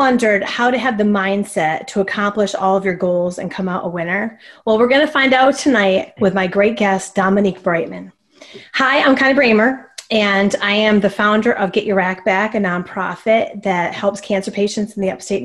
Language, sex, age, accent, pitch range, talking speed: English, female, 30-49, American, 185-225 Hz, 205 wpm